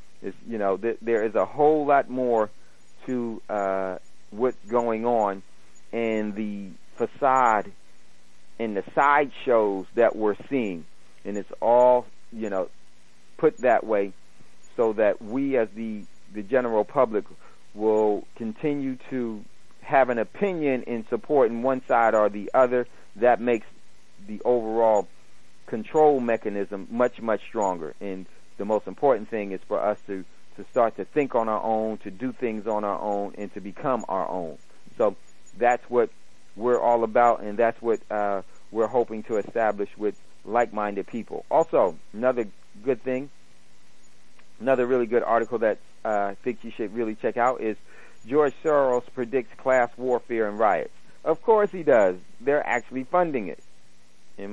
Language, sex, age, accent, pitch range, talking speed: English, male, 40-59, American, 95-125 Hz, 155 wpm